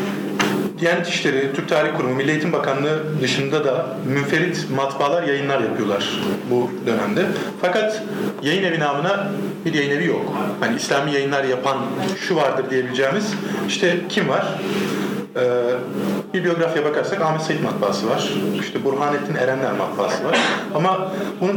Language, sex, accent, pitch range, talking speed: Turkish, male, native, 130-175 Hz, 135 wpm